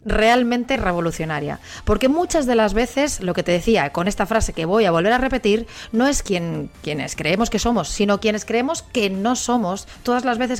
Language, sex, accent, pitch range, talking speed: Spanish, female, Spanish, 190-250 Hz, 200 wpm